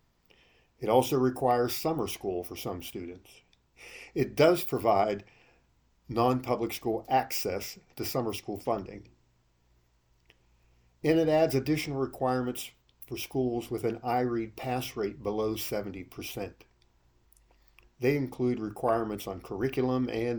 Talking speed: 110 wpm